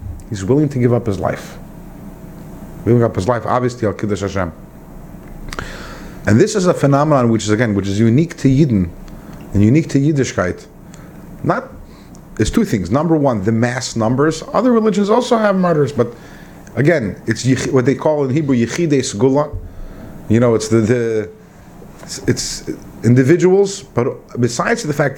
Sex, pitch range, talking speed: male, 105-150 Hz, 160 wpm